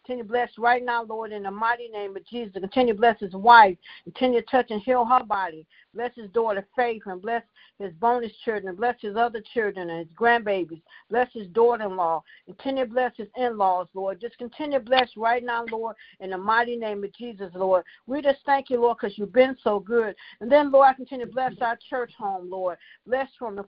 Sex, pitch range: female, 205-245 Hz